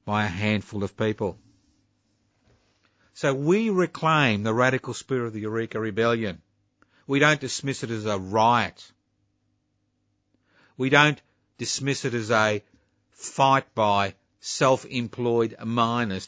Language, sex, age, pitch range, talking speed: English, male, 50-69, 100-125 Hz, 120 wpm